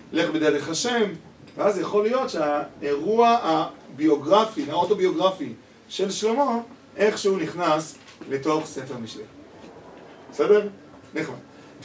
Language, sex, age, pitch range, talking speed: Hebrew, male, 40-59, 160-215 Hz, 90 wpm